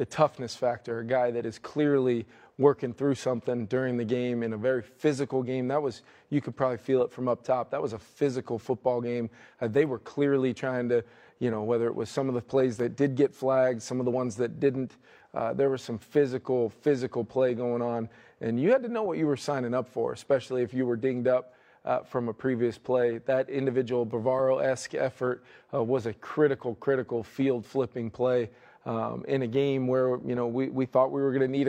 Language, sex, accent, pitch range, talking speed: English, male, American, 120-130 Hz, 225 wpm